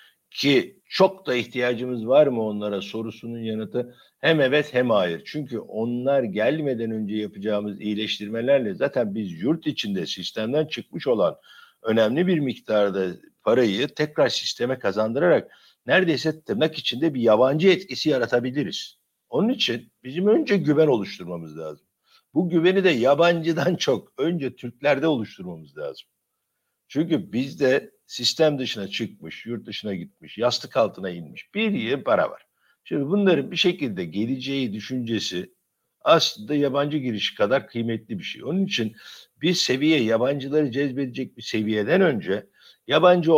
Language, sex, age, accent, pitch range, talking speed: Turkish, male, 60-79, native, 115-165 Hz, 130 wpm